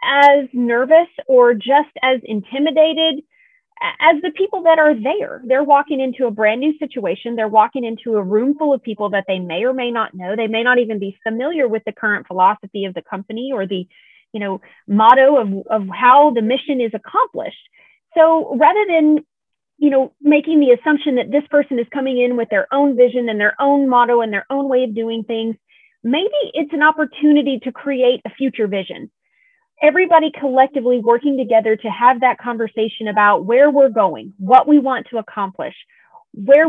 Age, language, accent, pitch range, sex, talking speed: 30-49, English, American, 220-295 Hz, female, 190 wpm